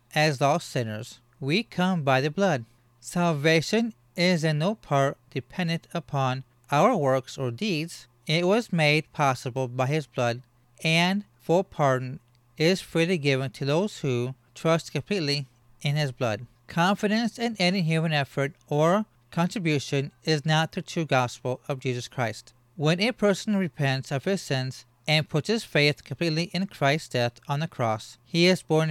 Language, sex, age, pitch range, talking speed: English, male, 40-59, 130-175 Hz, 160 wpm